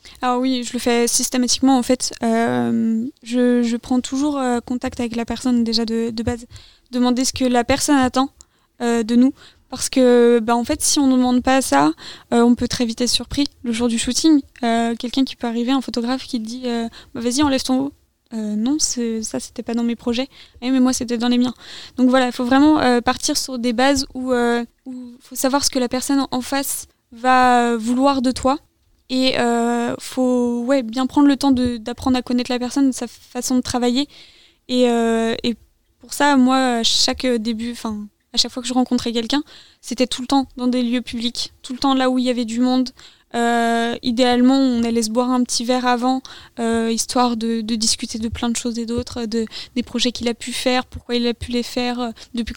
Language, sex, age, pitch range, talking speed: French, female, 20-39, 235-260 Hz, 225 wpm